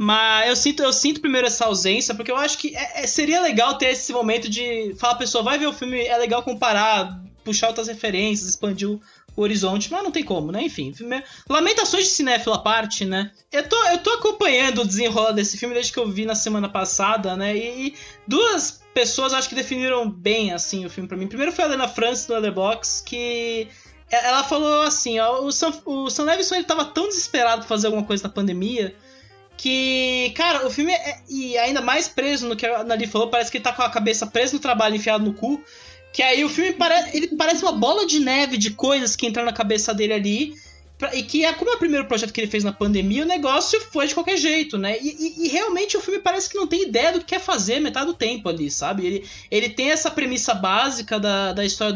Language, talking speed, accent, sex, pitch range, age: English, 235 wpm, Brazilian, male, 215-285 Hz, 20-39